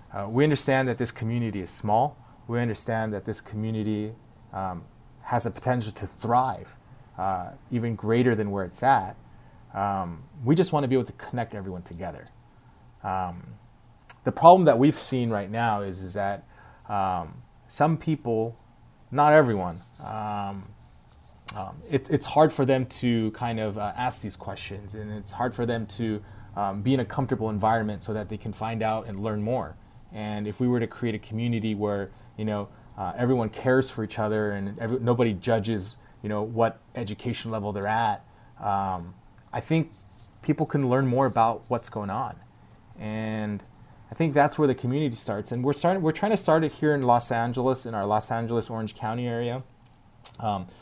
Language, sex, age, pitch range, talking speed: English, male, 30-49, 105-125 Hz, 180 wpm